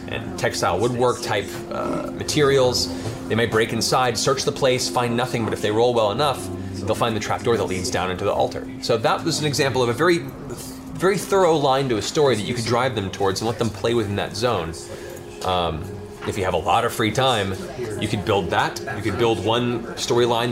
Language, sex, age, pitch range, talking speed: English, male, 20-39, 100-125 Hz, 220 wpm